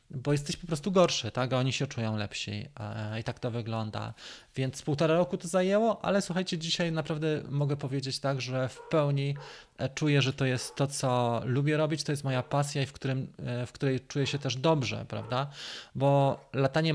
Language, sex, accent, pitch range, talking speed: Polish, male, native, 120-155 Hz, 185 wpm